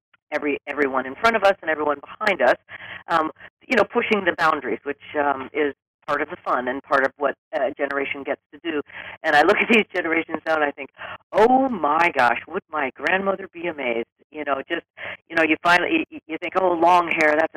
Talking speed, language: 220 wpm, English